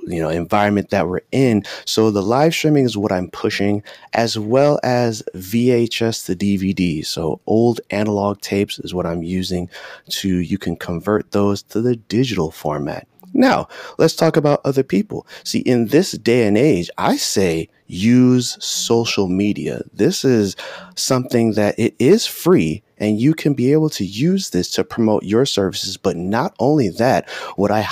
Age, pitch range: 30-49, 95-130 Hz